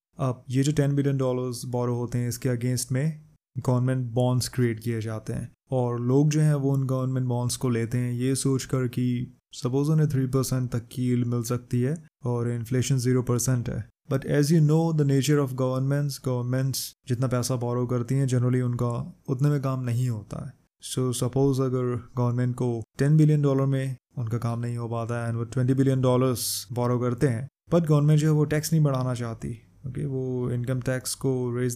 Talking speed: 200 wpm